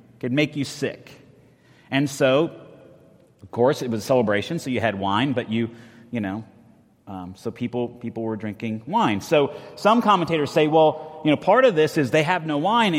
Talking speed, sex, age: 200 wpm, male, 30-49